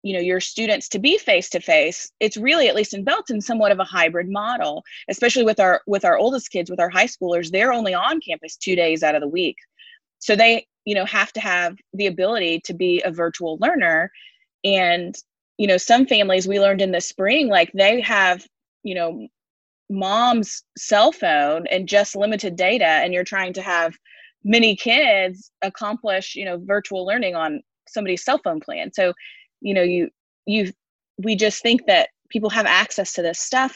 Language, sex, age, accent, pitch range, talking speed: English, female, 20-39, American, 175-220 Hz, 195 wpm